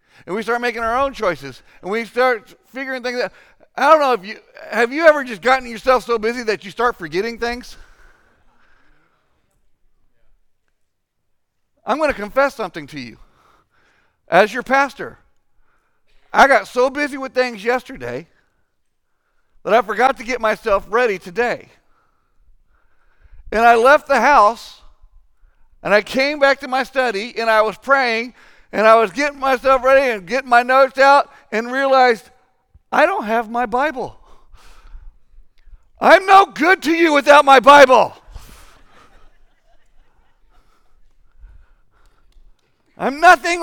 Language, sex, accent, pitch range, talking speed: English, male, American, 225-290 Hz, 140 wpm